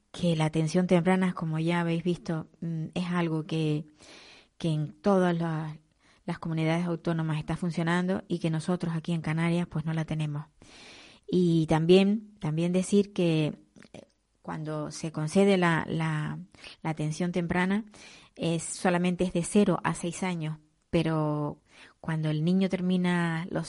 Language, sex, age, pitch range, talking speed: Spanish, female, 20-39, 160-190 Hz, 145 wpm